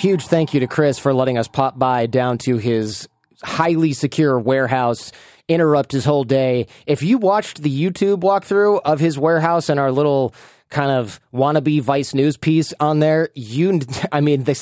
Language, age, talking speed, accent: English, 30-49, 180 wpm, American